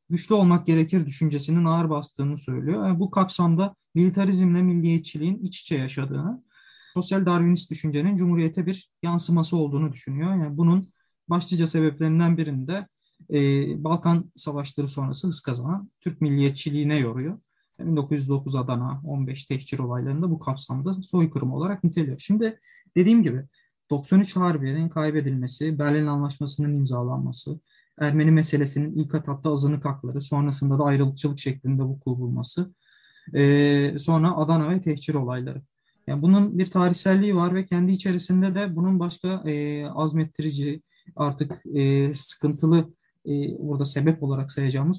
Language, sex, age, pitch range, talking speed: Turkish, male, 30-49, 140-175 Hz, 125 wpm